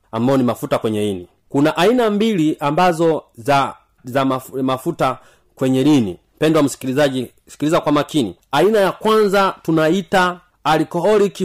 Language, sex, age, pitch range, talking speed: Swahili, male, 40-59, 135-185 Hz, 120 wpm